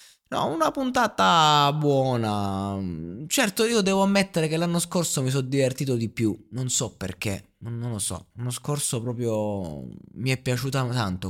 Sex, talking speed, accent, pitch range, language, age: male, 155 wpm, native, 105-140 Hz, Italian, 20-39